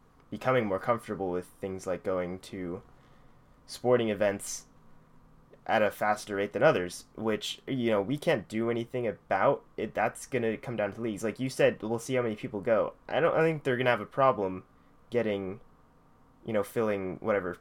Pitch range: 95-120 Hz